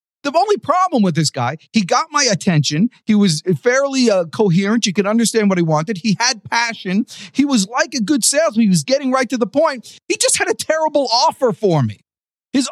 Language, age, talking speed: English, 40-59, 215 wpm